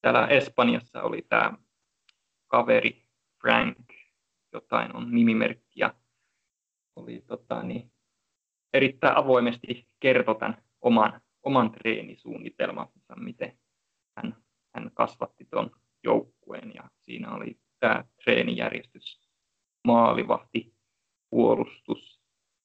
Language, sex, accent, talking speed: Finnish, male, native, 80 wpm